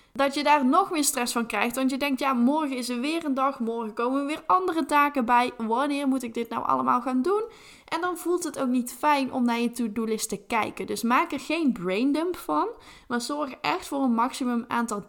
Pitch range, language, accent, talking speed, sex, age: 220-270 Hz, Dutch, Dutch, 235 wpm, female, 10-29